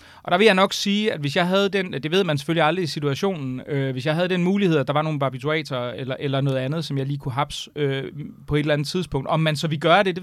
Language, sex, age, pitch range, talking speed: Danish, male, 30-49, 140-180 Hz, 300 wpm